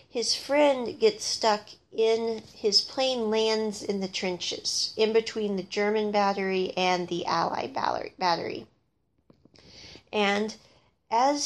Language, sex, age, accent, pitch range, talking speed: English, female, 40-59, American, 200-235 Hz, 115 wpm